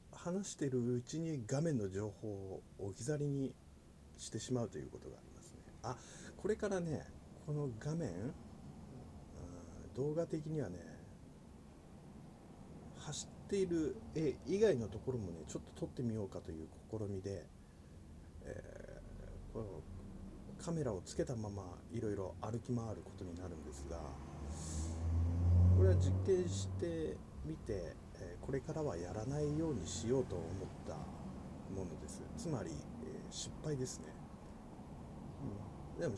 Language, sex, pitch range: Japanese, male, 80-135 Hz